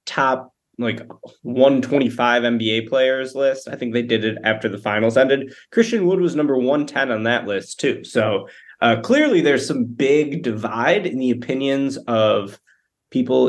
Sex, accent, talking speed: male, American, 160 wpm